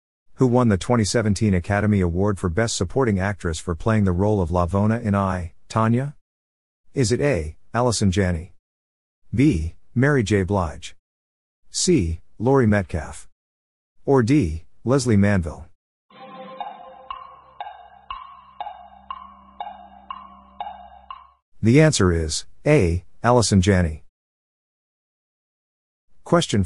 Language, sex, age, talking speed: English, male, 50-69, 95 wpm